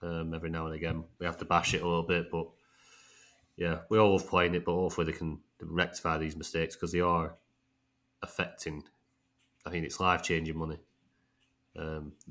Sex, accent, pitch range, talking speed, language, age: male, British, 85-105 Hz, 190 wpm, English, 30-49